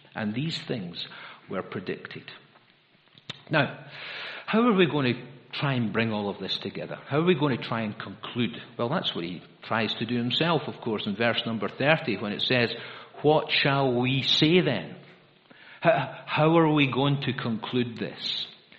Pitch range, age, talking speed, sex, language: 115-145 Hz, 50-69, 175 wpm, male, English